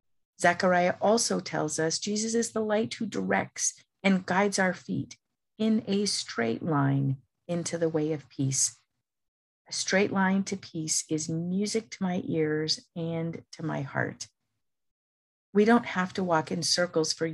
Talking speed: 155 wpm